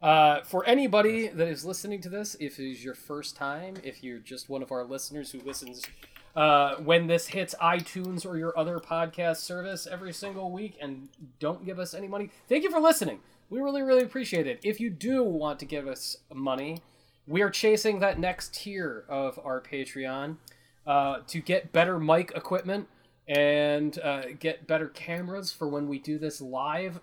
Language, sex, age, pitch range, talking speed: English, male, 20-39, 145-195 Hz, 190 wpm